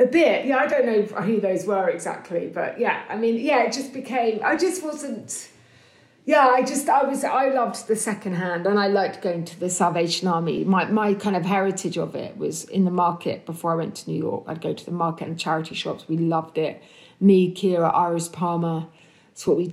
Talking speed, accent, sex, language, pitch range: 225 wpm, British, female, English, 165-210 Hz